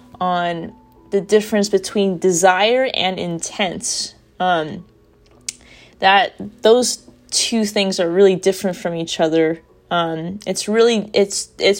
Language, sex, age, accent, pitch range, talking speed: English, female, 20-39, American, 180-230 Hz, 110 wpm